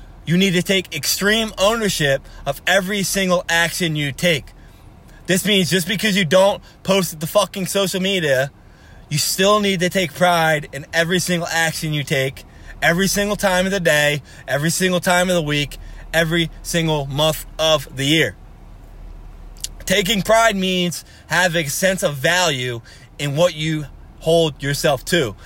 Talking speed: 160 wpm